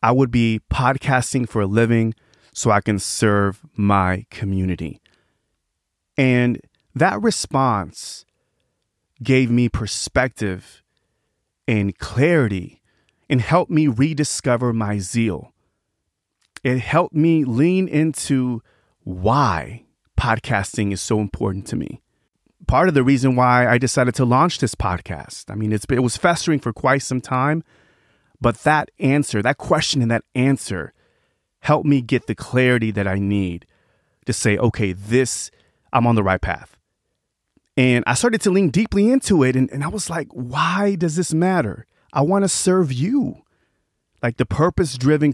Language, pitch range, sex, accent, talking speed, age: English, 105-140 Hz, male, American, 145 wpm, 30-49